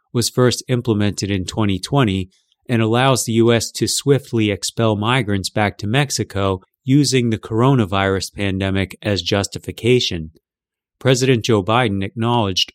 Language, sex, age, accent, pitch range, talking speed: English, male, 30-49, American, 95-125 Hz, 120 wpm